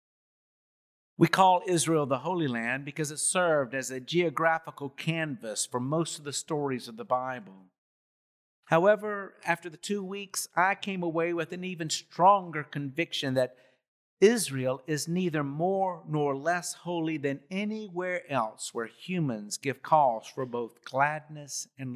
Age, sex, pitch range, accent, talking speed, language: 50-69, male, 130-175 Hz, American, 145 wpm, English